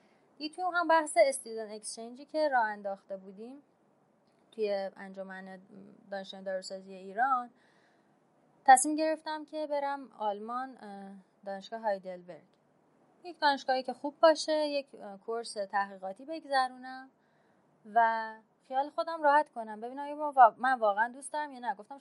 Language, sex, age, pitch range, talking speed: Persian, female, 20-39, 195-270 Hz, 115 wpm